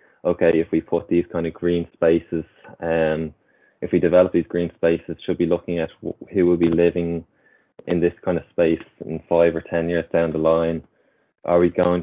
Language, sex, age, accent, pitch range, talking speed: English, male, 20-39, Irish, 80-85 Hz, 210 wpm